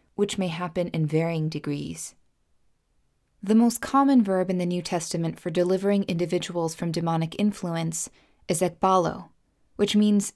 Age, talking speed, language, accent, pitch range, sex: 20-39, 140 wpm, English, American, 165-205 Hz, female